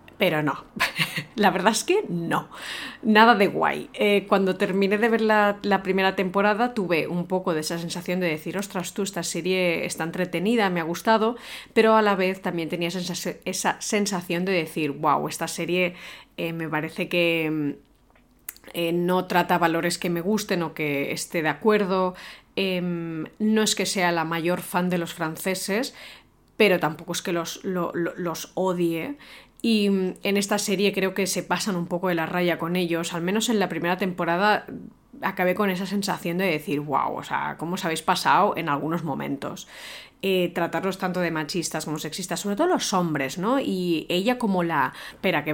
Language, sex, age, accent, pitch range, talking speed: Spanish, female, 30-49, Spanish, 170-195 Hz, 180 wpm